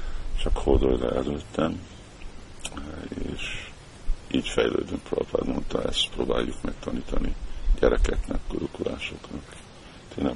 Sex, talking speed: male, 85 wpm